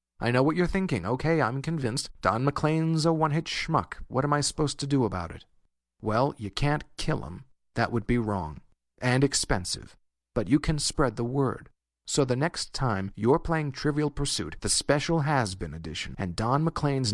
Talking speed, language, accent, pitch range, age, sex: 185 wpm, English, American, 95-130 Hz, 40-59, male